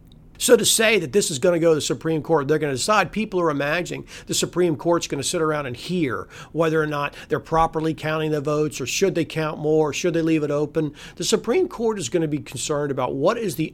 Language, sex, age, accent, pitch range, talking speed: English, male, 50-69, American, 150-220 Hz, 260 wpm